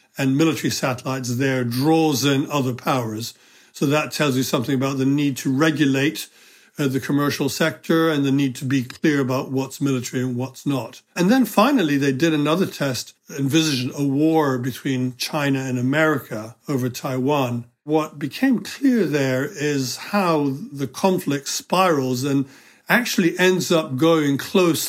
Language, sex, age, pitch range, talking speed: English, male, 60-79, 130-155 Hz, 155 wpm